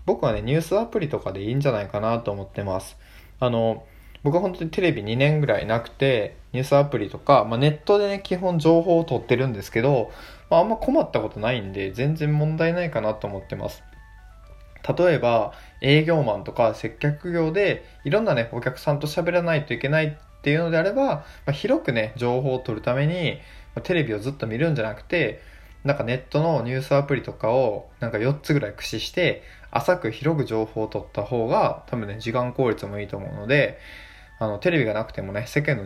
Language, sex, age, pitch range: Japanese, male, 20-39, 105-150 Hz